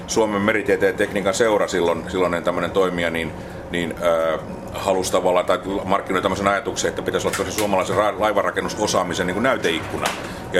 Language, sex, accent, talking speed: Finnish, male, native, 160 wpm